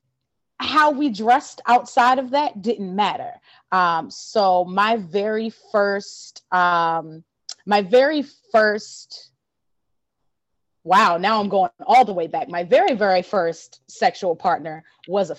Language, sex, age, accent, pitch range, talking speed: English, female, 20-39, American, 170-215 Hz, 130 wpm